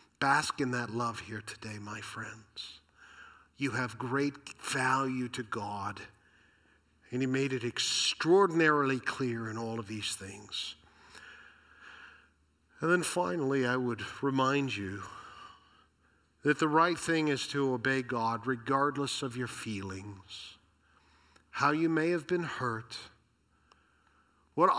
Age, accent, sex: 50-69, American, male